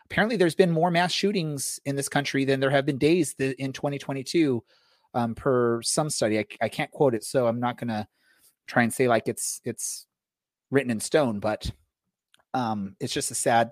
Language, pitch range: English, 115-150 Hz